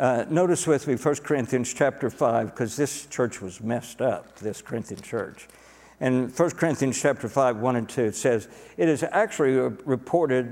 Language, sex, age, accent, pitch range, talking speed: English, male, 60-79, American, 120-145 Hz, 175 wpm